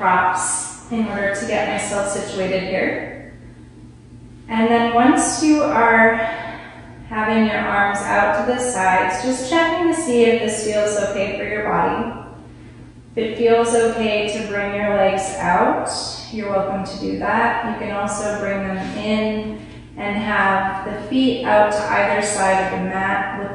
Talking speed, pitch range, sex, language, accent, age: 160 wpm, 185-220 Hz, female, English, American, 20-39